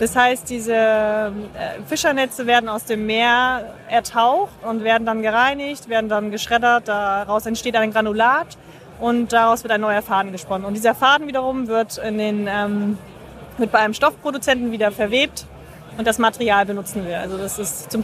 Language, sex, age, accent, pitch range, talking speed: German, female, 30-49, German, 225-265 Hz, 165 wpm